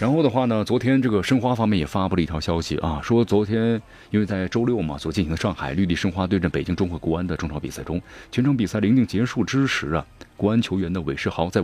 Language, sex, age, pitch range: Chinese, male, 30-49, 85-110 Hz